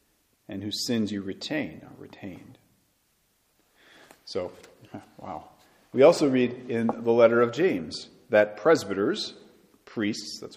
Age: 40-59